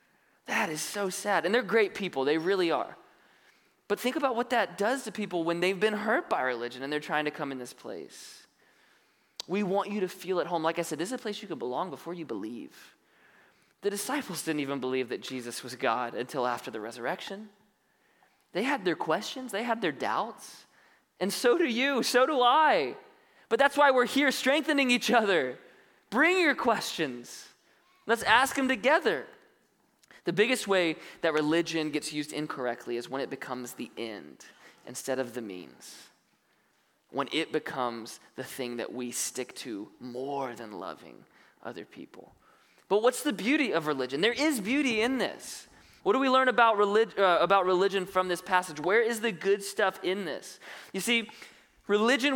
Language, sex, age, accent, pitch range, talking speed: English, male, 20-39, American, 150-235 Hz, 185 wpm